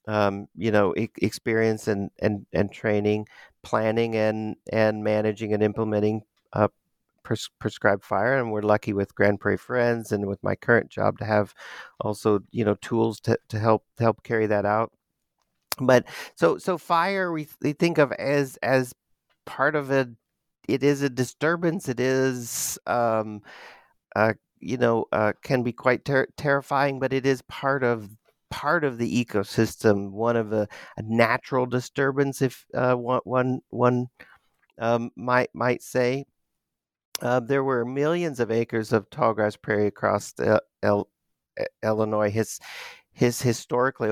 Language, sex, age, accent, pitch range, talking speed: English, male, 40-59, American, 105-130 Hz, 155 wpm